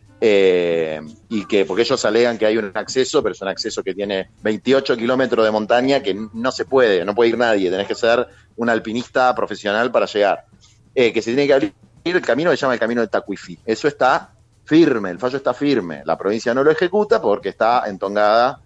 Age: 30-49